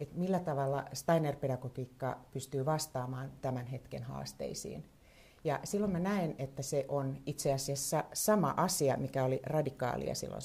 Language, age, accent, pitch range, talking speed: Finnish, 60-79, native, 130-160 Hz, 145 wpm